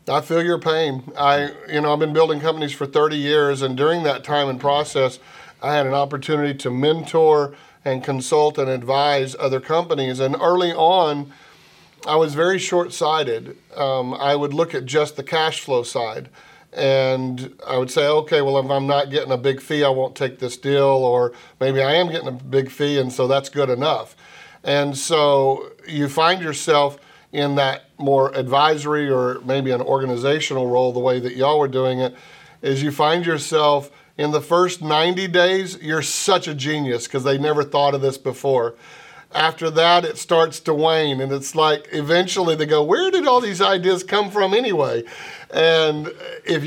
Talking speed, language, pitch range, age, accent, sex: 185 wpm, English, 135-160 Hz, 40-59, American, male